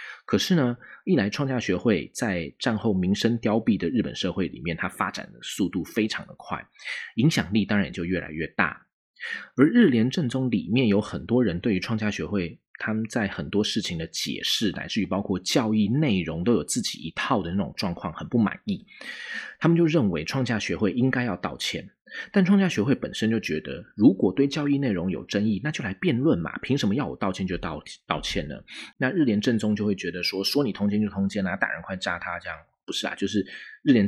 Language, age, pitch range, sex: Chinese, 30-49, 90-125 Hz, male